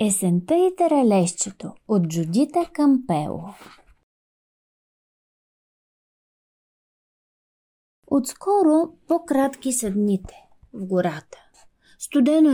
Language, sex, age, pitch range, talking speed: Bulgarian, female, 30-49, 230-330 Hz, 60 wpm